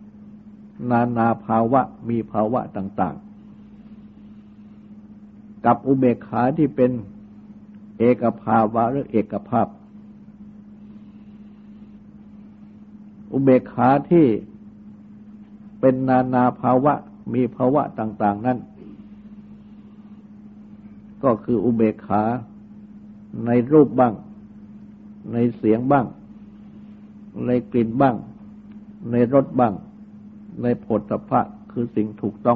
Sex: male